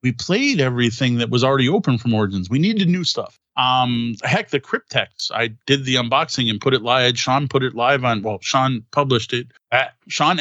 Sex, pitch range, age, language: male, 120-150 Hz, 30-49, English